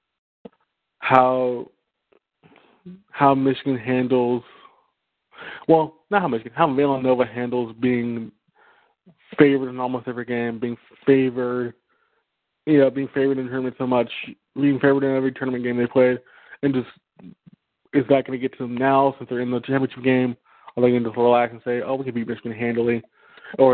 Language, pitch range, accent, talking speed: English, 120-135 Hz, American, 165 wpm